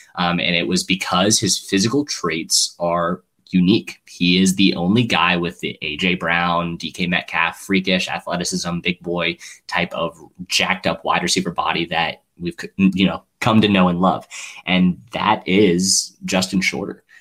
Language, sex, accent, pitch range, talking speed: English, male, American, 90-100 Hz, 160 wpm